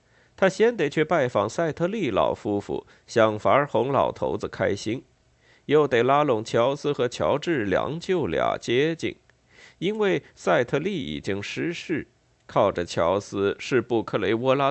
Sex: male